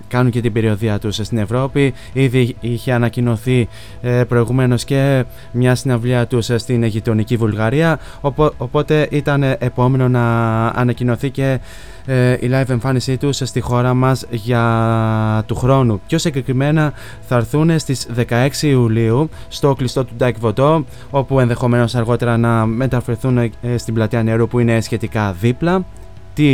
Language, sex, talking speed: Greek, male, 140 wpm